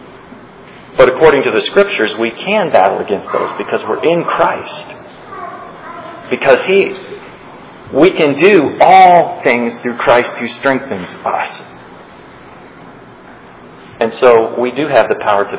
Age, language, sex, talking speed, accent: 40-59, English, male, 130 wpm, American